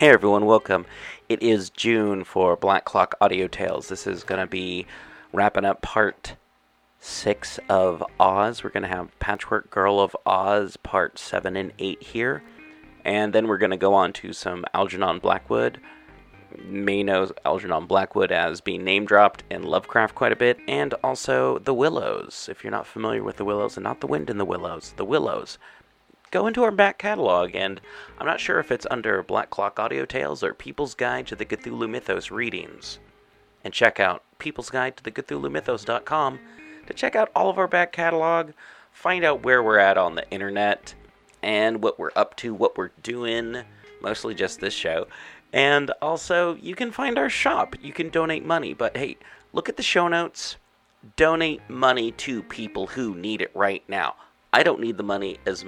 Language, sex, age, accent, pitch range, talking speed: English, male, 30-49, American, 100-160 Hz, 185 wpm